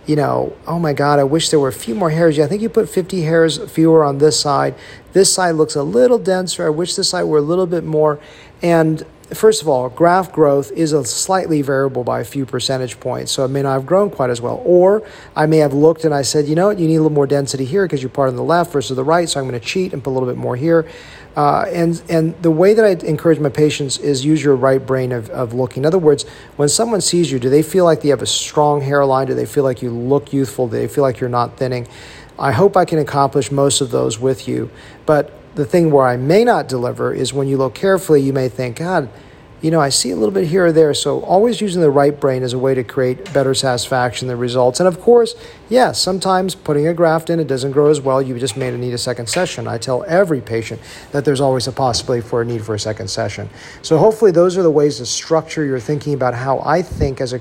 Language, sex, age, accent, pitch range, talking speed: English, male, 40-59, American, 130-165 Hz, 270 wpm